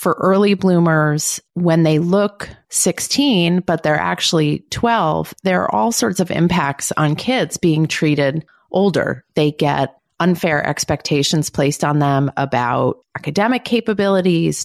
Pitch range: 165-230 Hz